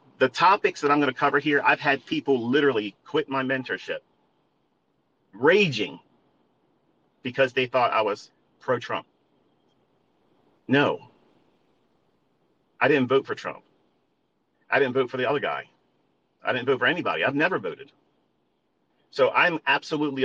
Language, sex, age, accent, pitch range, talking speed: English, male, 40-59, American, 135-180 Hz, 135 wpm